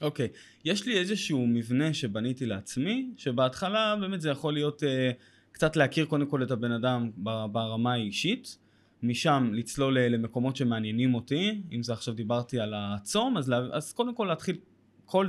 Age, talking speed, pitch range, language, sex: 20-39, 155 wpm, 120-155 Hz, Hebrew, male